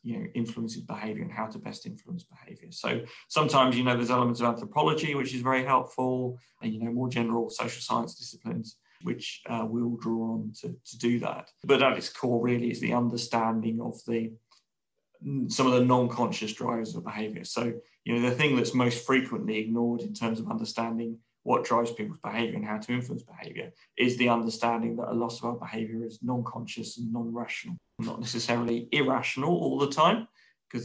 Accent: British